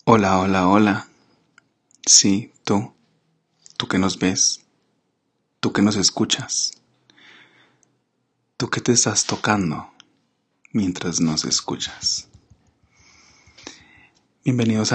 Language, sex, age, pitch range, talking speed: Spanish, male, 30-49, 95-115 Hz, 90 wpm